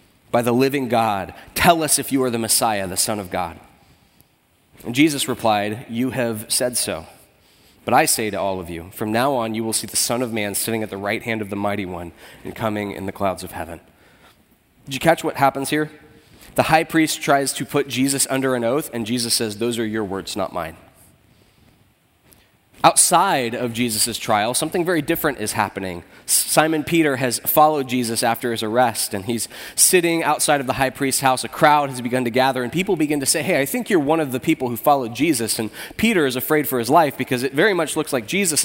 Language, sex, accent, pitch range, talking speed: English, male, American, 115-145 Hz, 220 wpm